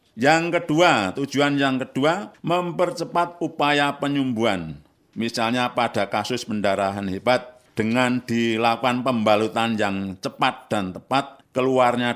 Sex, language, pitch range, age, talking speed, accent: male, Indonesian, 110-145 Hz, 50-69, 105 wpm, native